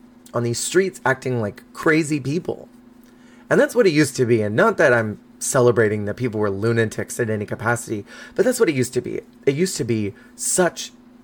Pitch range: 115-160 Hz